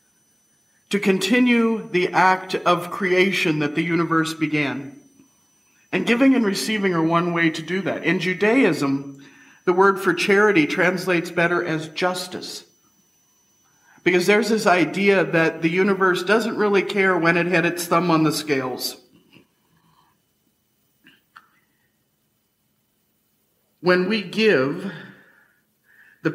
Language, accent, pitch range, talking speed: English, American, 160-190 Hz, 120 wpm